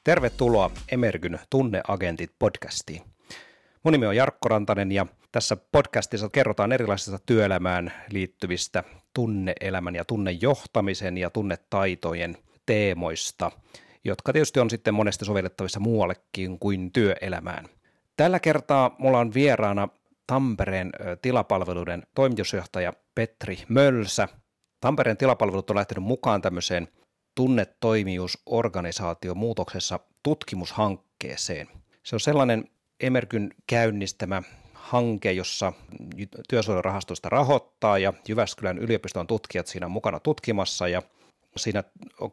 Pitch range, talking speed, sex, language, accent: 90-115 Hz, 100 wpm, male, Finnish, native